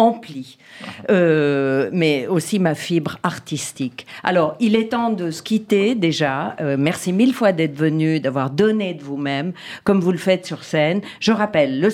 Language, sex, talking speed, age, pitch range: French, female, 165 wpm, 50-69, 150-210 Hz